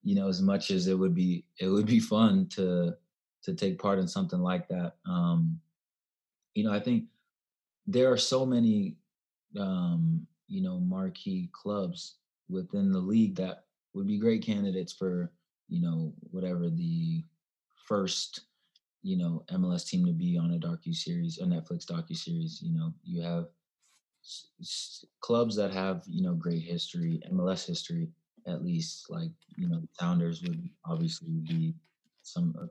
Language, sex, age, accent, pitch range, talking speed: English, male, 20-39, American, 160-185 Hz, 155 wpm